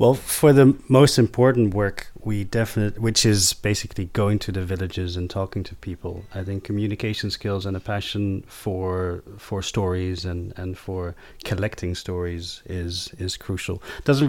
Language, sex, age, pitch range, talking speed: English, male, 30-49, 95-105 Hz, 165 wpm